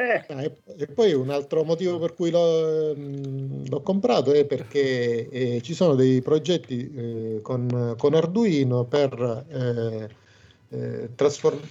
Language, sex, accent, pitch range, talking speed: Italian, male, native, 115-140 Hz, 125 wpm